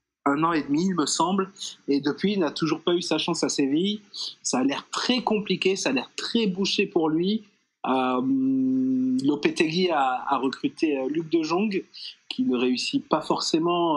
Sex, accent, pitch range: male, French, 140-210 Hz